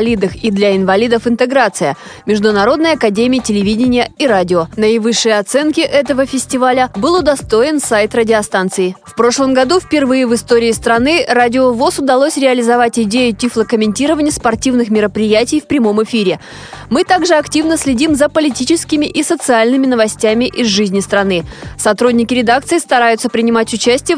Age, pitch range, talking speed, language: 20-39, 215-275 Hz, 130 wpm, Russian